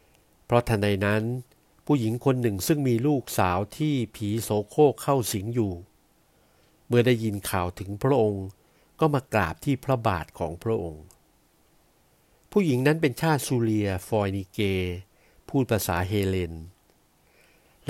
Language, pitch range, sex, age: Thai, 100-130 Hz, male, 60-79